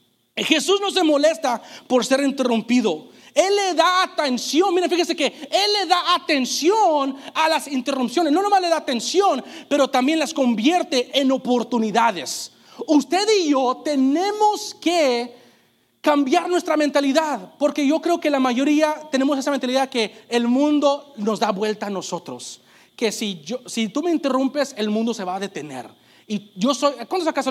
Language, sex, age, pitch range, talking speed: English, male, 40-59, 225-310 Hz, 165 wpm